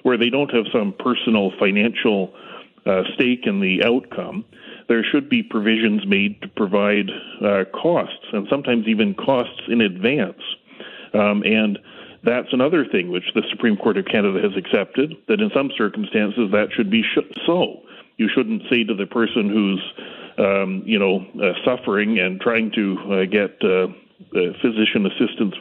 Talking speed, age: 160 wpm, 40-59